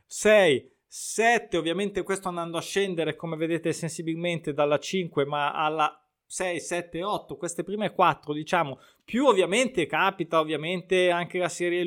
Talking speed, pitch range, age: 140 wpm, 165-205 Hz, 20-39